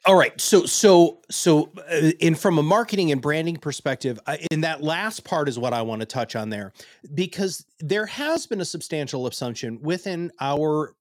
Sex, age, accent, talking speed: male, 30-49, American, 180 wpm